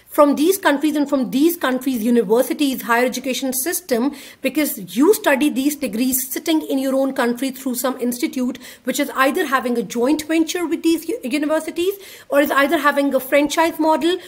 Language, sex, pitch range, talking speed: Urdu, female, 255-315 Hz, 170 wpm